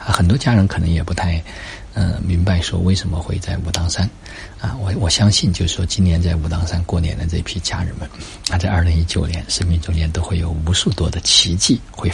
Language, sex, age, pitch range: Chinese, male, 50-69, 85-100 Hz